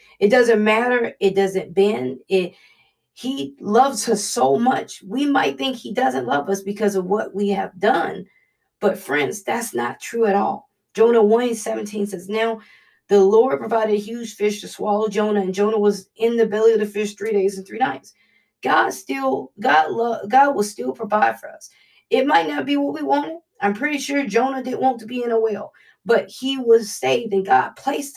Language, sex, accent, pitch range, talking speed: English, female, American, 200-255 Hz, 200 wpm